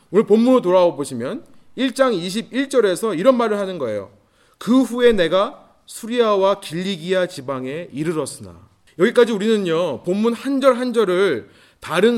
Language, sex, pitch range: Korean, male, 175-245 Hz